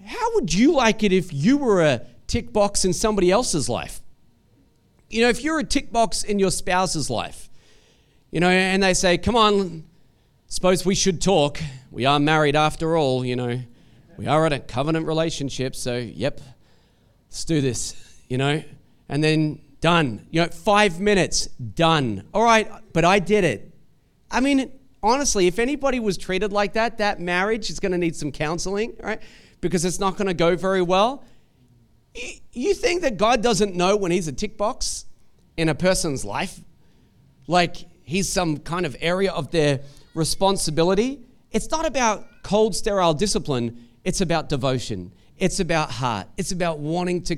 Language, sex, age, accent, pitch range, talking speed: English, male, 40-59, Australian, 145-205 Hz, 170 wpm